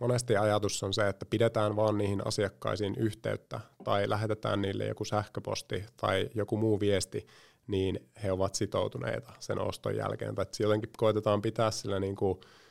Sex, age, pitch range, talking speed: male, 30-49, 100-110 Hz, 160 wpm